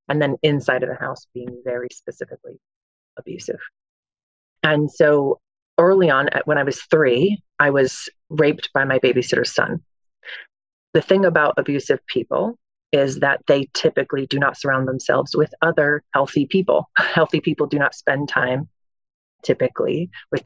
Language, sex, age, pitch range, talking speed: English, female, 30-49, 130-165 Hz, 145 wpm